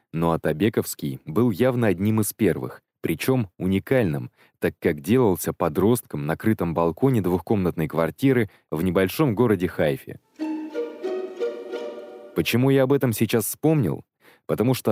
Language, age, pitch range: Russian, 20-39, 90-120 Hz